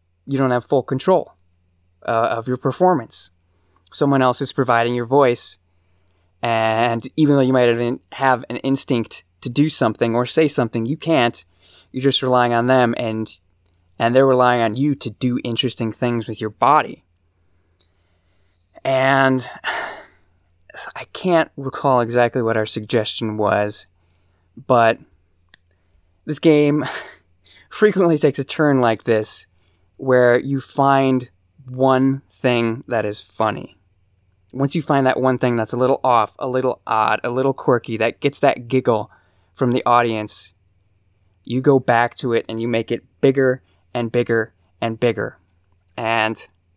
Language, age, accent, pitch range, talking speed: English, 20-39, American, 95-130 Hz, 145 wpm